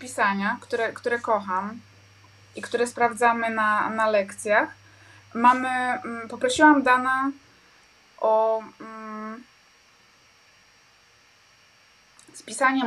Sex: female